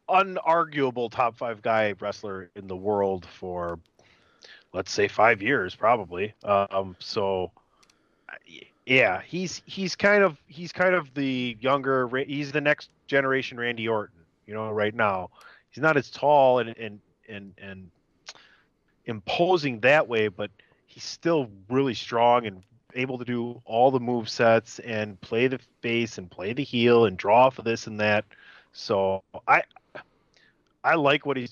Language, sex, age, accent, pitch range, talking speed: English, male, 30-49, American, 110-150 Hz, 155 wpm